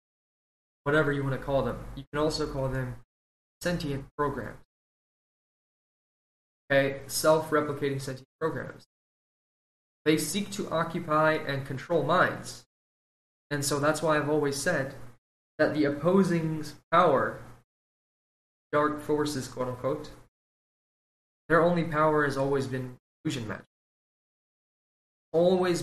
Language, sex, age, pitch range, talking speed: English, male, 20-39, 130-160 Hz, 110 wpm